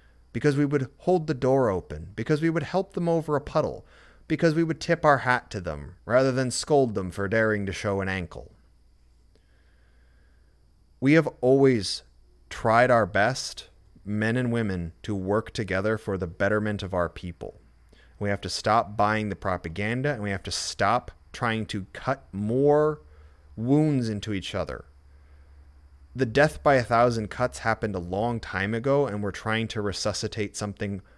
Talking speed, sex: 170 wpm, male